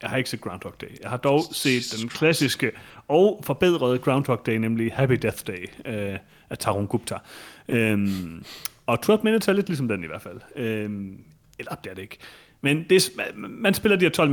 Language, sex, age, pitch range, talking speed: Danish, male, 30-49, 110-145 Hz, 205 wpm